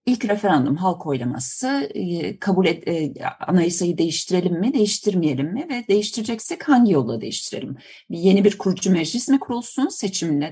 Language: Turkish